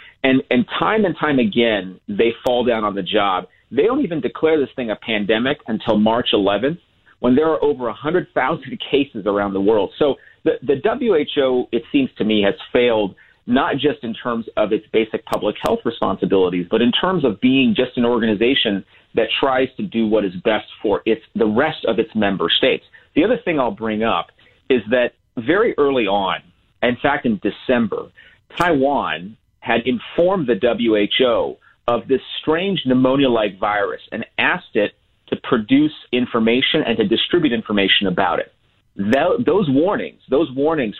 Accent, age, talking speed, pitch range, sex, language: American, 40-59, 170 wpm, 105-135 Hz, male, English